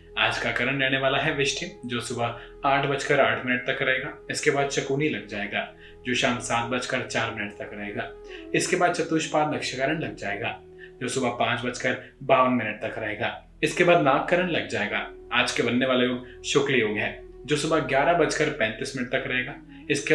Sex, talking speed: male, 100 wpm